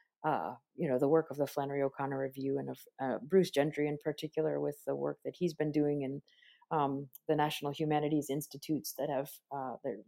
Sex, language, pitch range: female, English, 135-160 Hz